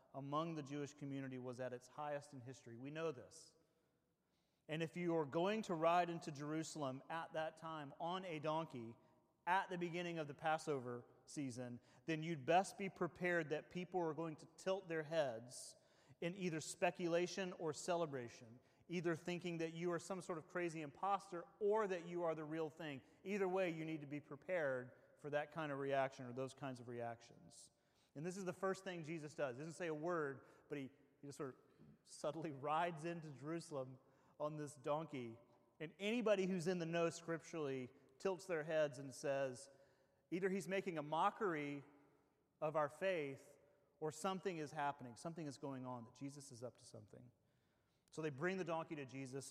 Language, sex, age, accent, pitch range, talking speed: English, male, 30-49, American, 135-170 Hz, 185 wpm